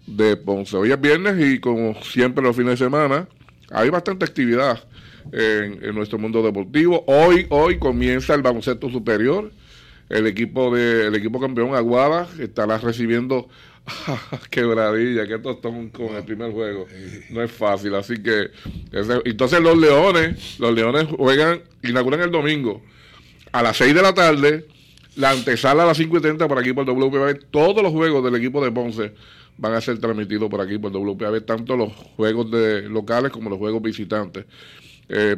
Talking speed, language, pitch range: 170 wpm, Spanish, 110-140 Hz